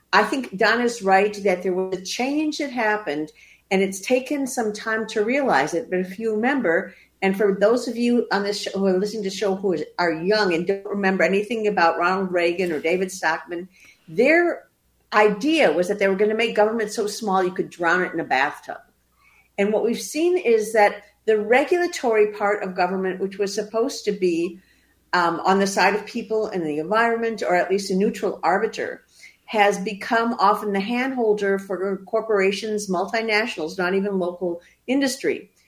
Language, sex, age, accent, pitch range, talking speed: English, female, 50-69, American, 185-225 Hz, 190 wpm